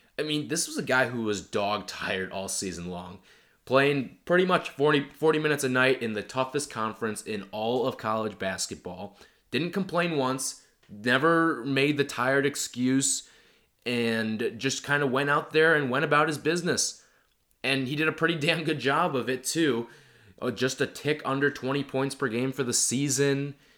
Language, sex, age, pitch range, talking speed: English, male, 20-39, 110-145 Hz, 180 wpm